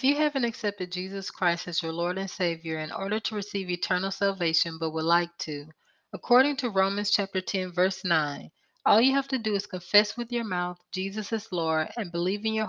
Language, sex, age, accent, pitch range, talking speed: English, female, 30-49, American, 175-220 Hz, 215 wpm